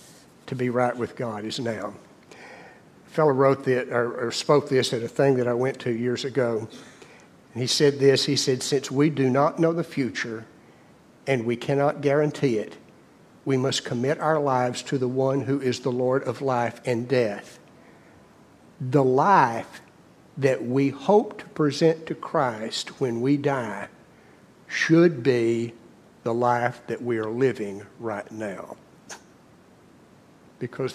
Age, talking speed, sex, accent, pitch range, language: 60-79, 155 wpm, male, American, 120-140 Hz, English